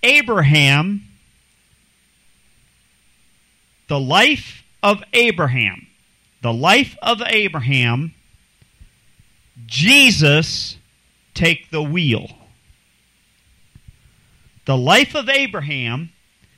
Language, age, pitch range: English, 40-59, 140-215 Hz